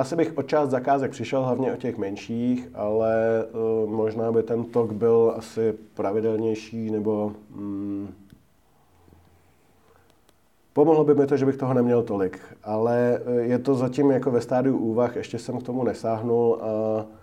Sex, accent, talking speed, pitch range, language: male, native, 155 wpm, 105-125 Hz, Czech